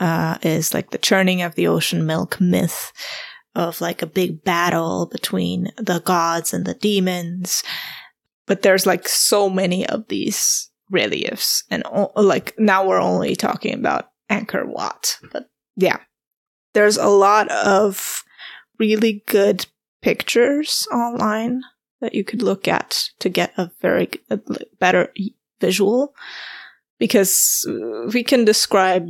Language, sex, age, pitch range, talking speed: English, female, 20-39, 185-240 Hz, 135 wpm